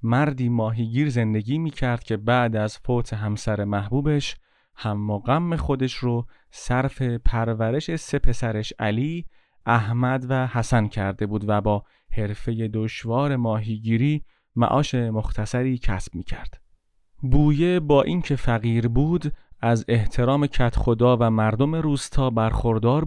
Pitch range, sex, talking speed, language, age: 110-140 Hz, male, 120 wpm, Persian, 30-49